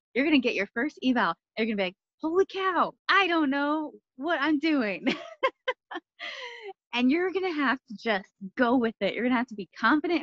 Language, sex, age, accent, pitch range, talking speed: English, female, 20-39, American, 195-275 Hz, 215 wpm